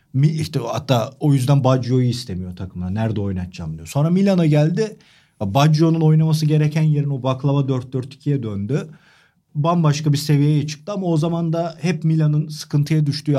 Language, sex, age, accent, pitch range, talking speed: Turkish, male, 40-59, native, 130-165 Hz, 150 wpm